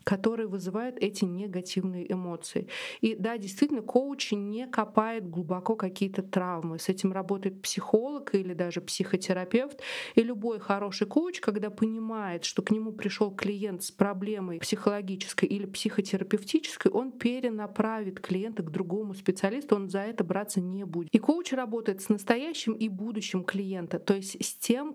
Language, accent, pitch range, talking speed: Russian, native, 190-230 Hz, 145 wpm